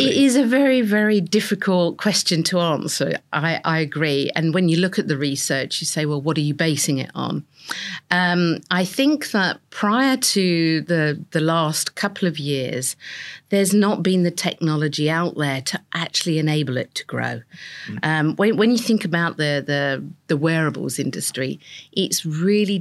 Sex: female